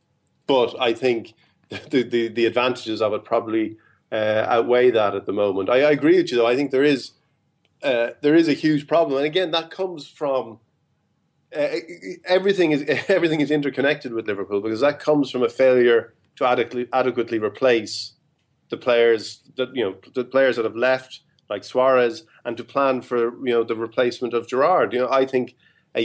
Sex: male